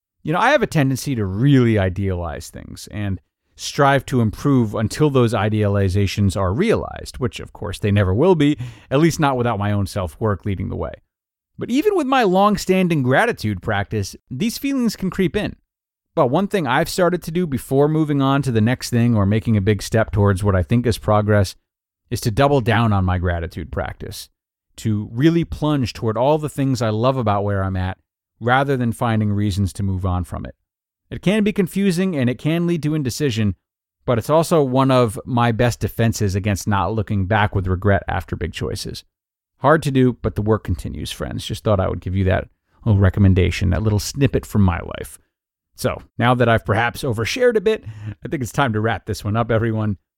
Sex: male